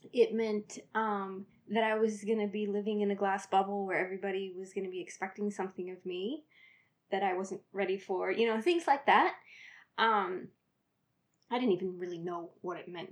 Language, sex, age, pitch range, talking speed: English, female, 20-39, 190-230 Hz, 195 wpm